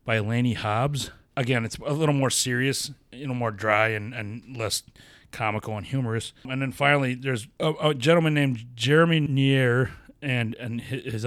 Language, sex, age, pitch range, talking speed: English, male, 30-49, 110-130 Hz, 170 wpm